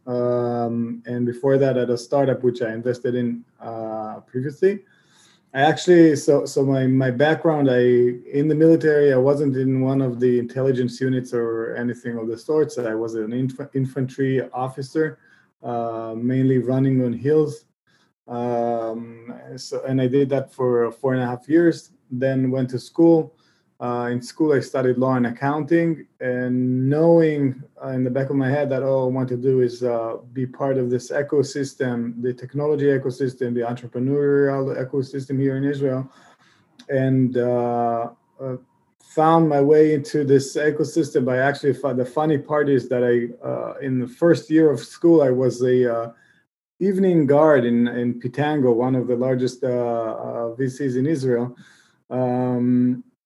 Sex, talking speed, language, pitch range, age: male, 165 wpm, English, 120-145 Hz, 20-39